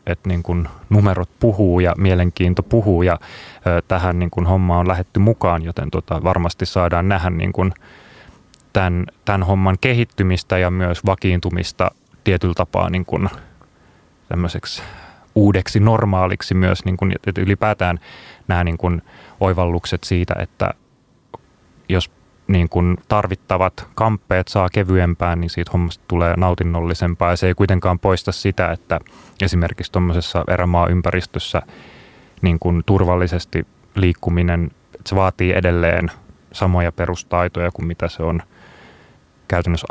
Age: 30-49